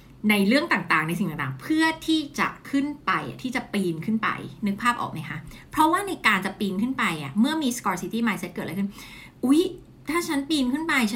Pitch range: 180-255 Hz